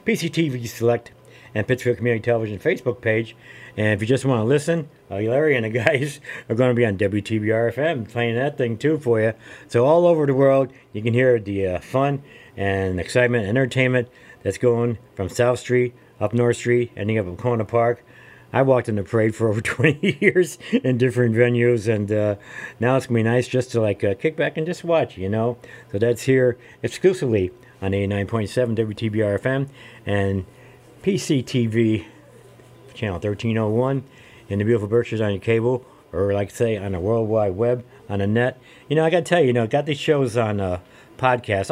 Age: 50-69